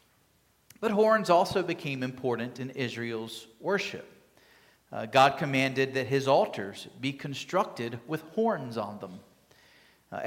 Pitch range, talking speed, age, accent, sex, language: 150-200 Hz, 125 wpm, 40-59, American, male, English